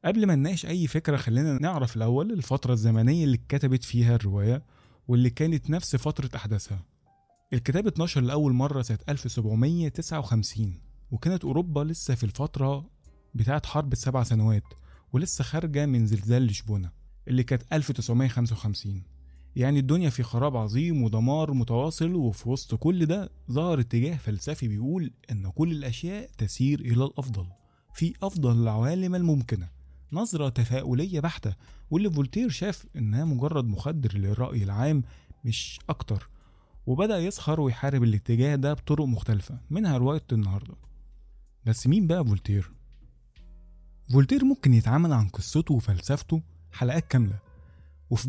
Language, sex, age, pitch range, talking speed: Arabic, male, 20-39, 110-150 Hz, 130 wpm